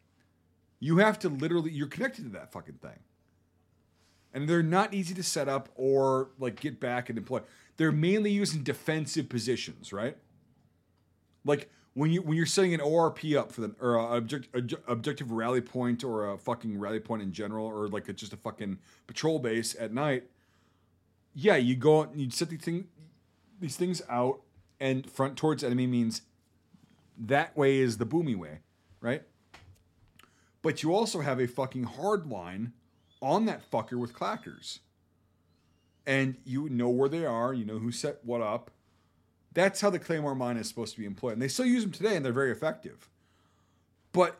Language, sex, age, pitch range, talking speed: English, male, 40-59, 105-160 Hz, 180 wpm